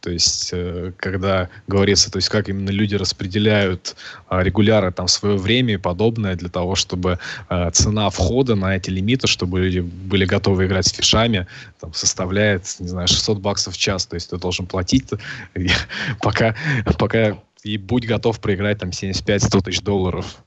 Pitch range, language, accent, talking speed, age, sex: 95-110 Hz, Russian, native, 165 wpm, 20-39, male